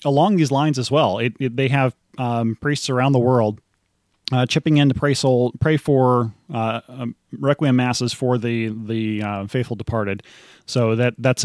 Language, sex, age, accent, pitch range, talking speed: English, male, 20-39, American, 110-130 Hz, 185 wpm